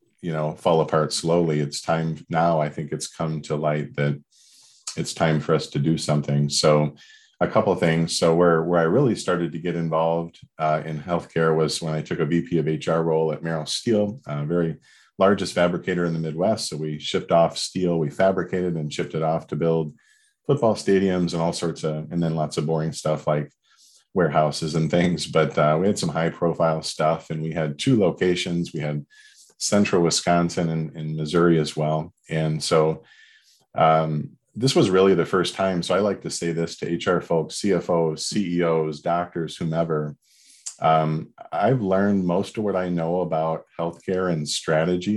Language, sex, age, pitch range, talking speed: English, male, 40-59, 80-90 Hz, 190 wpm